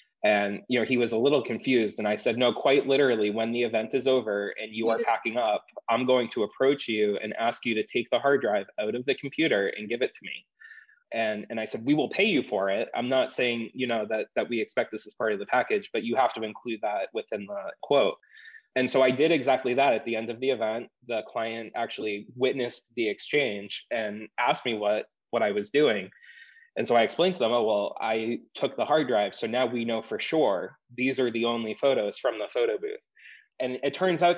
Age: 20-39